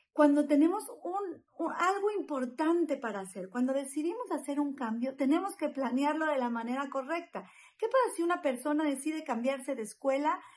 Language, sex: Spanish, female